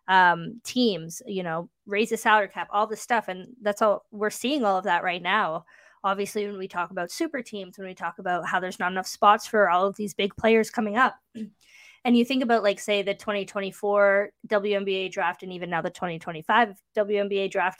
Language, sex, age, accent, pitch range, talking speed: English, female, 20-39, American, 185-225 Hz, 210 wpm